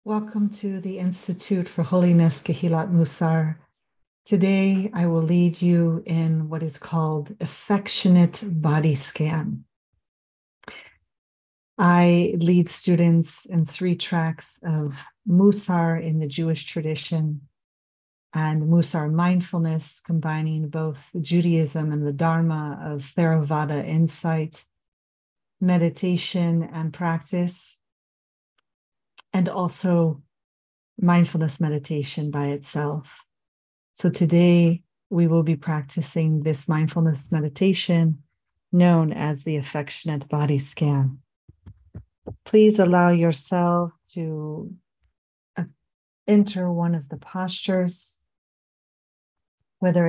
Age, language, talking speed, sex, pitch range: 40-59, English, 95 wpm, female, 155-175 Hz